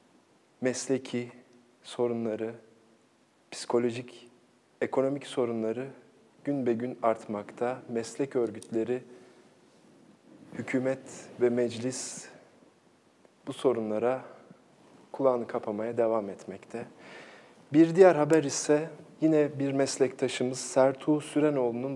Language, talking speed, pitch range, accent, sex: Turkish, 80 wpm, 115-140 Hz, native, male